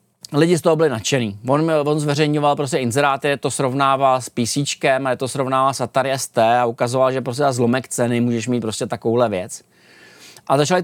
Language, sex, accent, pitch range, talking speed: Czech, male, native, 130-170 Hz, 190 wpm